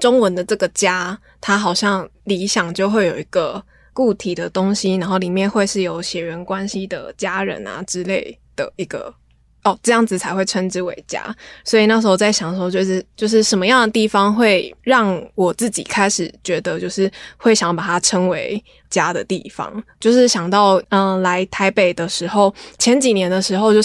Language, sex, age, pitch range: Chinese, female, 20-39, 185-220 Hz